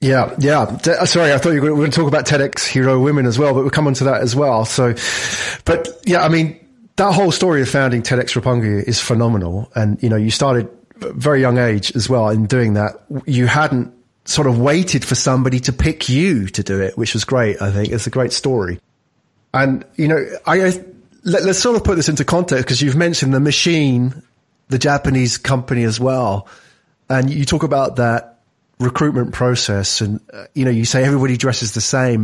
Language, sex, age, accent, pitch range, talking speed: English, male, 30-49, British, 115-145 Hz, 210 wpm